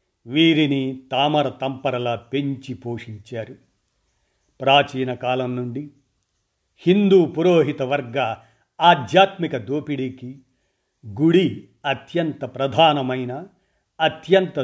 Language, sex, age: Telugu, male, 50-69